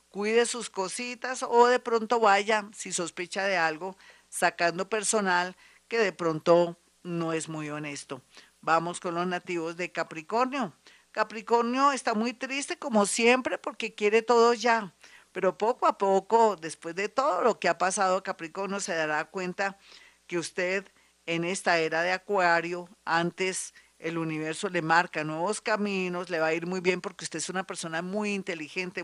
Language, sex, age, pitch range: Spanish, female, 50-69, 170-220 Hz